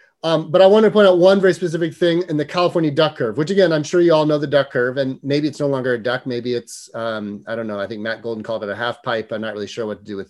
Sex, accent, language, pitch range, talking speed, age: male, American, English, 140-190 Hz, 325 wpm, 30-49